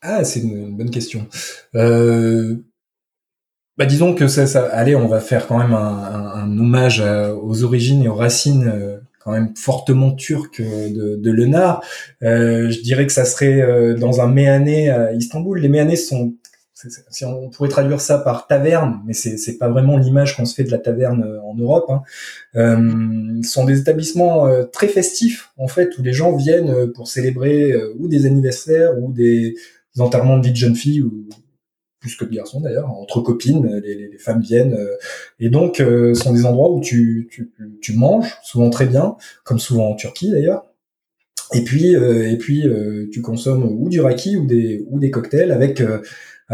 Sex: male